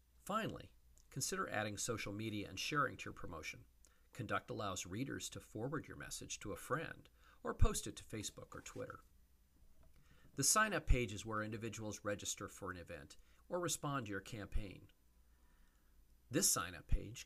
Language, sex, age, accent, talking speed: English, male, 40-59, American, 155 wpm